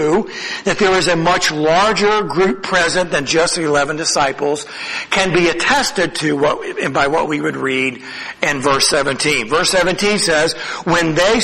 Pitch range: 165-230 Hz